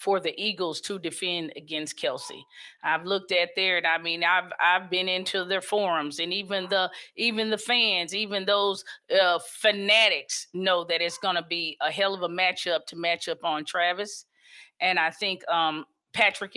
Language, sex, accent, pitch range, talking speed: English, female, American, 175-200 Hz, 185 wpm